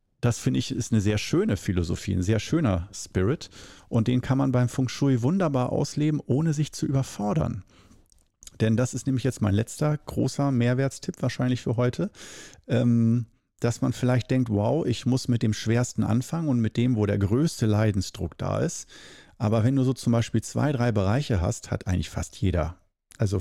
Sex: male